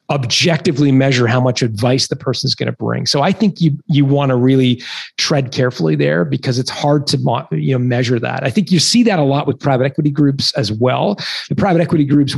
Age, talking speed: 40-59, 230 wpm